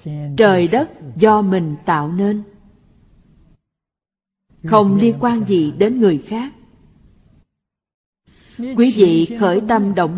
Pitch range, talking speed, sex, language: 165-220 Hz, 105 wpm, female, Vietnamese